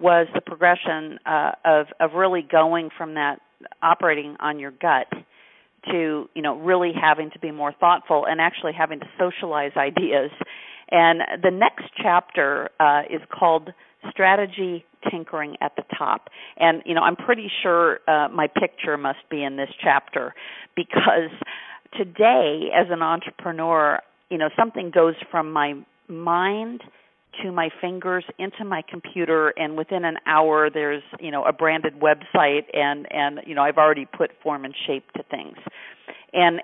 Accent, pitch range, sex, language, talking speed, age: American, 150-180 Hz, female, English, 160 wpm, 50-69